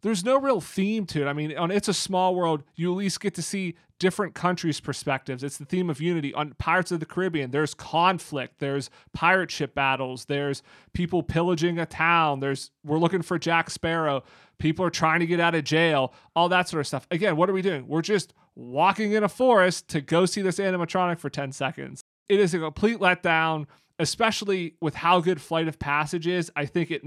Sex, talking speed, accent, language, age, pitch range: male, 215 wpm, American, English, 30-49, 145-175 Hz